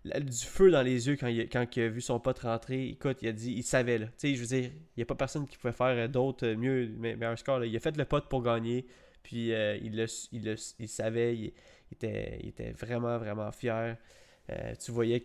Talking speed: 265 wpm